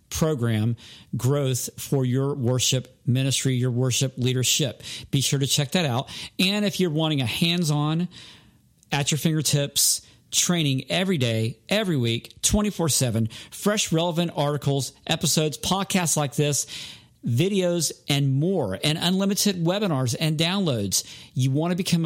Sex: male